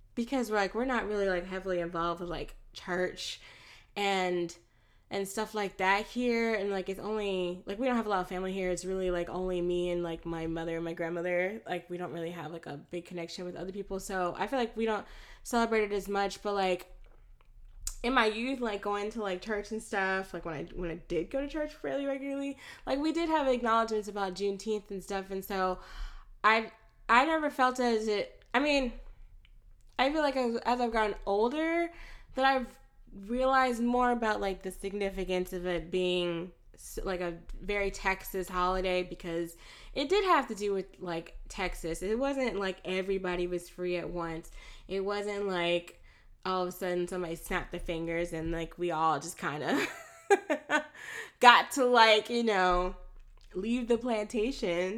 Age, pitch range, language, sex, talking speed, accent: 10-29, 180-230 Hz, English, female, 190 wpm, American